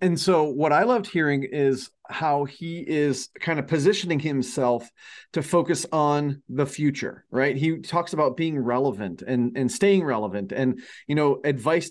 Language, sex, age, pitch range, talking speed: English, male, 30-49, 130-160 Hz, 165 wpm